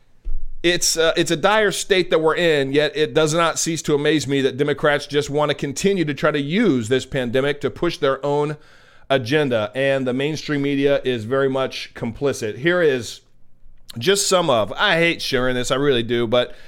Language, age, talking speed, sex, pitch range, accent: English, 40-59, 200 wpm, male, 130-160 Hz, American